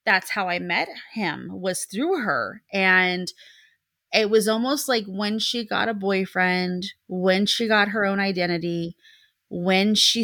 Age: 30-49